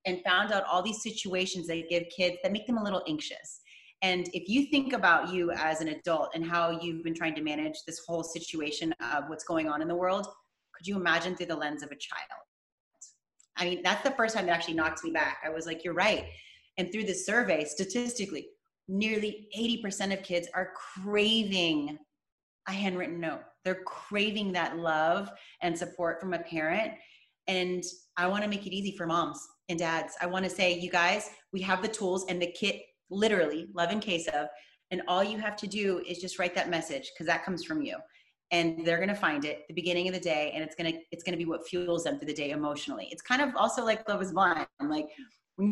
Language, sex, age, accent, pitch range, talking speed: English, female, 30-49, American, 165-200 Hz, 220 wpm